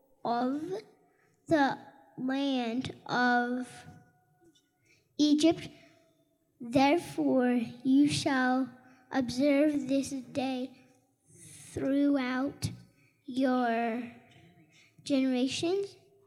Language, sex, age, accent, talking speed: English, female, 10-29, American, 50 wpm